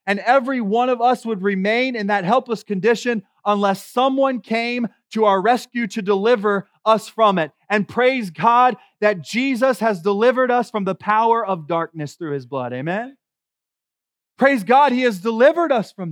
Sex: male